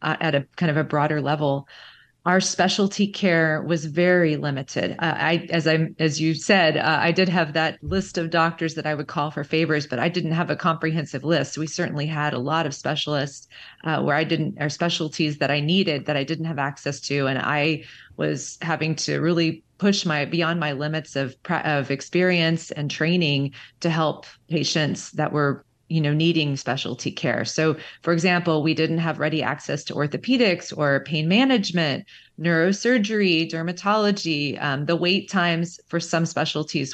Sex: female